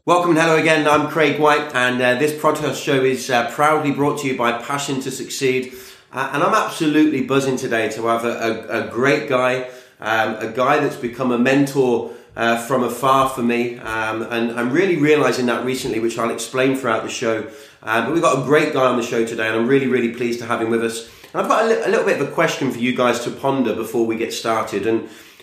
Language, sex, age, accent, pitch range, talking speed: English, male, 20-39, British, 120-150 Hz, 235 wpm